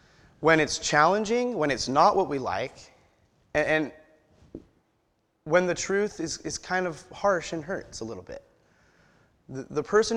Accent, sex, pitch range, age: American, male, 150-200 Hz, 30-49